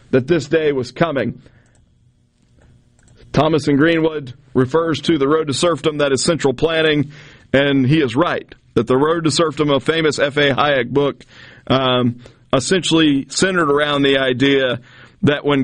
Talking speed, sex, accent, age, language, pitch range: 155 wpm, male, American, 40-59, English, 130-160 Hz